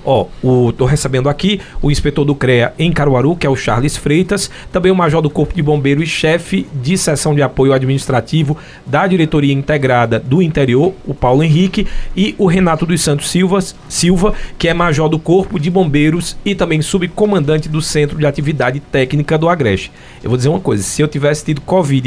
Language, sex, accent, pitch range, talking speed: Portuguese, male, Brazilian, 135-175 Hz, 195 wpm